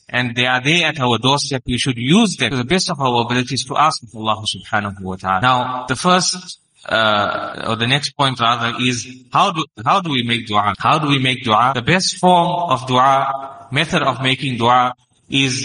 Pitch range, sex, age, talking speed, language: 115-160 Hz, male, 20-39, 215 wpm, English